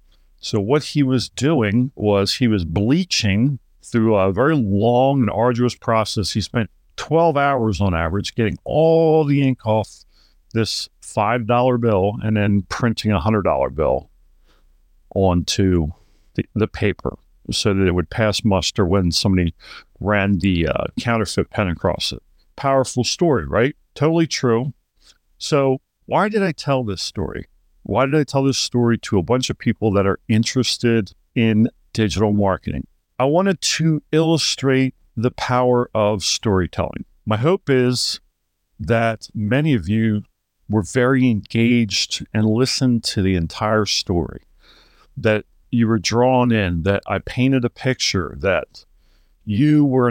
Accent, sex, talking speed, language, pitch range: American, male, 145 wpm, English, 100-130 Hz